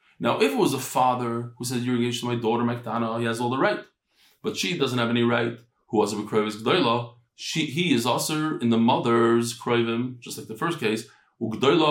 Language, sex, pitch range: English, male, 115-155 Hz